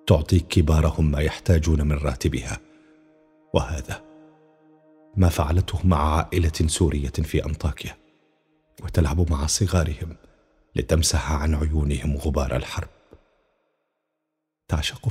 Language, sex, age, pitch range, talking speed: Arabic, male, 40-59, 80-105 Hz, 90 wpm